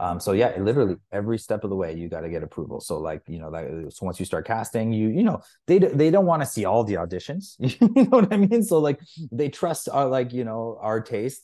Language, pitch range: English, 85-105 Hz